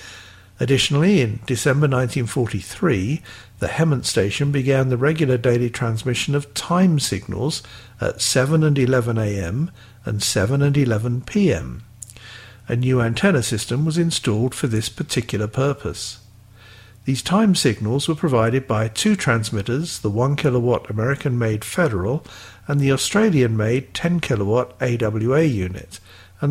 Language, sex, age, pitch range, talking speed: English, male, 60-79, 110-140 Hz, 125 wpm